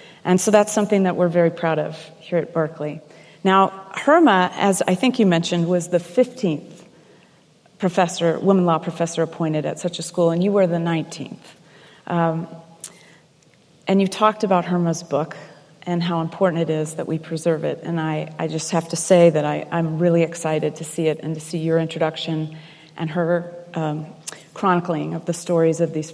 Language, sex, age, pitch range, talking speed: English, female, 30-49, 160-195 Hz, 185 wpm